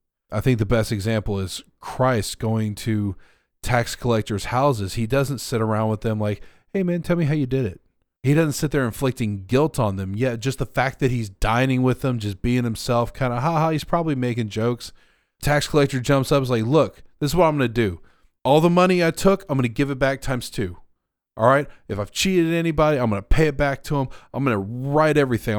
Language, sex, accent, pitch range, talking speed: English, male, American, 110-145 Hz, 235 wpm